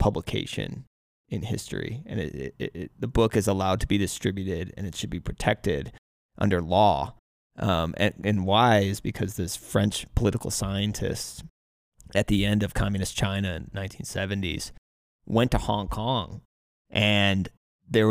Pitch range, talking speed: 95-110 Hz, 140 wpm